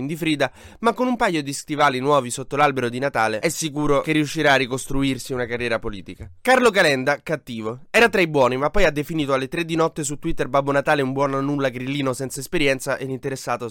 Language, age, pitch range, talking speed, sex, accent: Italian, 20-39, 130-170 Hz, 220 wpm, male, native